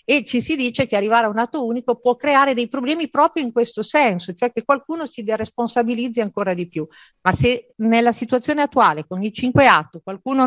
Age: 50-69